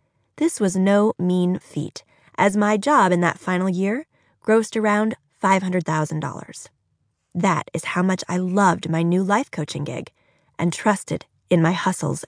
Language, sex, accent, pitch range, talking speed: English, female, American, 170-235 Hz, 150 wpm